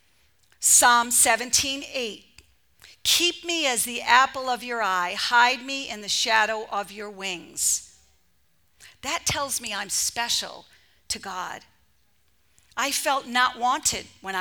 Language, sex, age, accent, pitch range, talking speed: English, female, 50-69, American, 235-315 Hz, 130 wpm